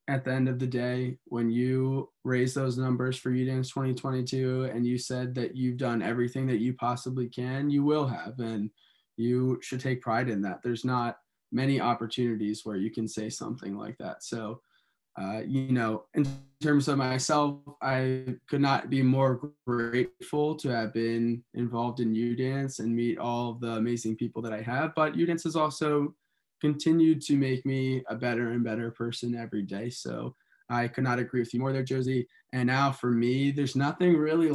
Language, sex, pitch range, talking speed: English, male, 120-135 Hz, 185 wpm